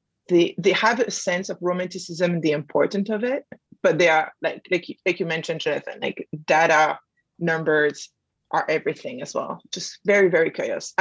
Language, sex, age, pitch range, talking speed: English, female, 20-39, 160-200 Hz, 175 wpm